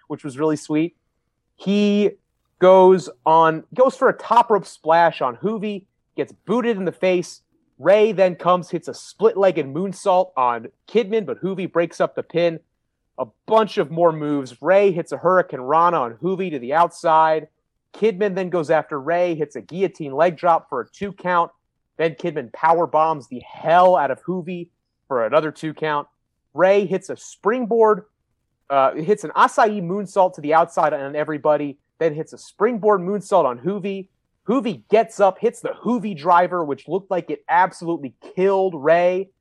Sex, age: male, 30-49